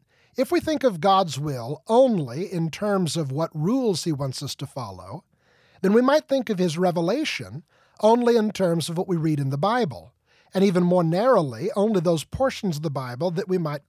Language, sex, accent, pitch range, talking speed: English, male, American, 150-205 Hz, 205 wpm